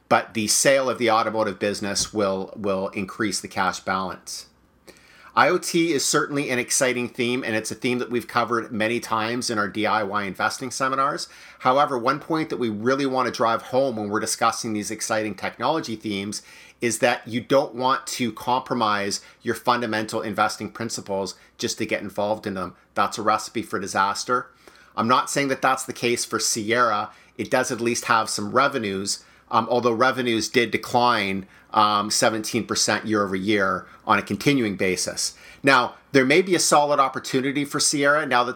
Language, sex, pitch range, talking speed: English, male, 105-130 Hz, 175 wpm